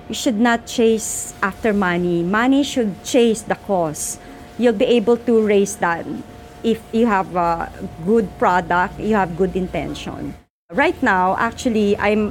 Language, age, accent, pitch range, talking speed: English, 50-69, Filipino, 180-225 Hz, 145 wpm